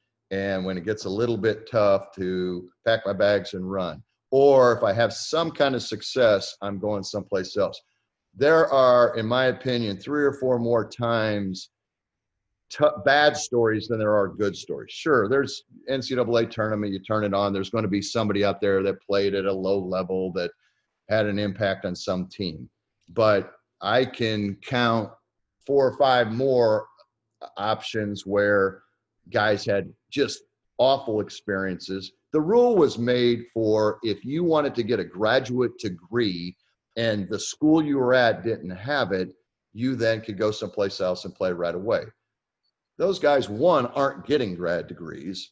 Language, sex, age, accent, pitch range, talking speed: English, male, 40-59, American, 100-125 Hz, 165 wpm